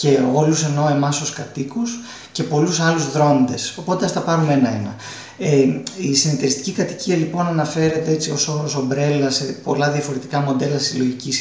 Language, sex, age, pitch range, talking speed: Greek, male, 30-49, 130-155 Hz, 145 wpm